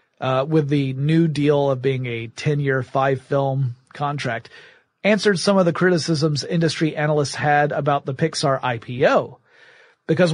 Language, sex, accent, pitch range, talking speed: English, male, American, 140-185 Hz, 140 wpm